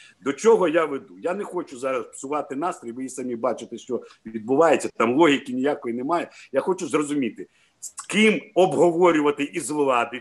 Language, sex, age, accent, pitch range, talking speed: Ukrainian, male, 50-69, native, 140-190 Hz, 160 wpm